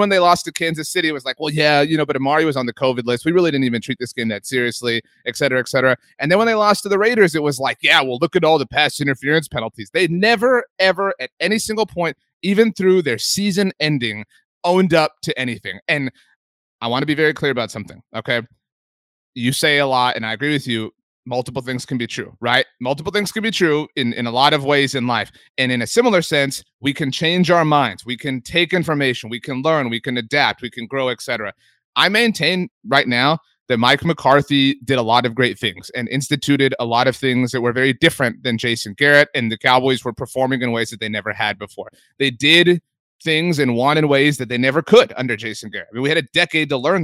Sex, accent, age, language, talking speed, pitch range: male, American, 30-49, English, 245 wpm, 120-160 Hz